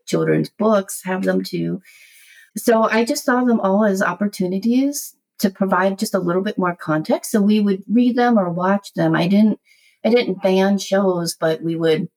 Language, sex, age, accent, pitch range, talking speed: English, female, 40-59, American, 165-205 Hz, 185 wpm